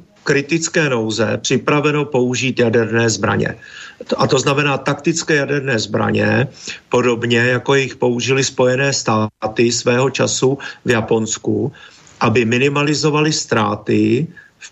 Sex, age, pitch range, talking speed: male, 50-69, 115-145 Hz, 105 wpm